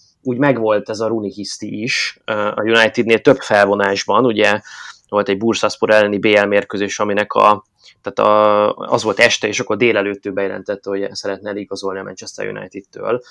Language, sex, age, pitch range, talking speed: Hungarian, male, 20-39, 105-125 Hz, 155 wpm